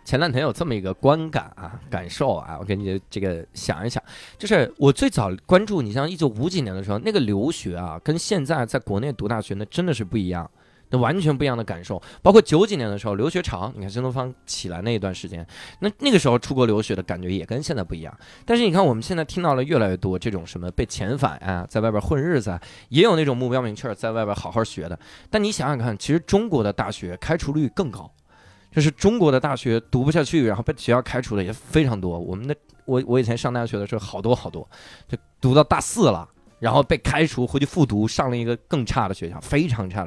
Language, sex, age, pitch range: Chinese, male, 20-39, 100-145 Hz